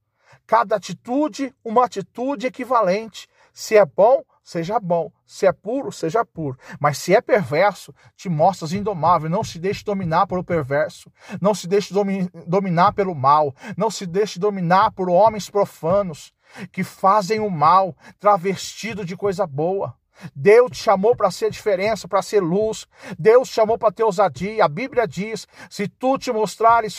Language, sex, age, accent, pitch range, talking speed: Portuguese, male, 50-69, Brazilian, 195-260 Hz, 160 wpm